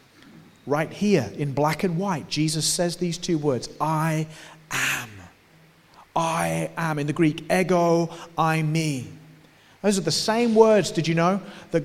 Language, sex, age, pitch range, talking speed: English, male, 40-59, 155-200 Hz, 150 wpm